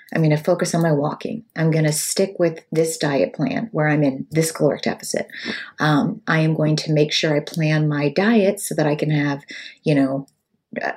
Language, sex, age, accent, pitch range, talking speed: English, female, 30-49, American, 155-195 Hz, 220 wpm